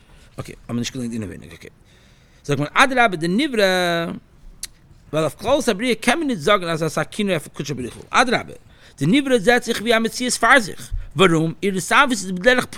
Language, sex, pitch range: English, male, 145-240 Hz